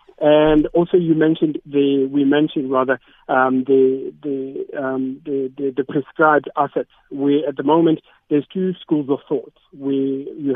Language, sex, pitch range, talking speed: English, male, 130-150 Hz, 160 wpm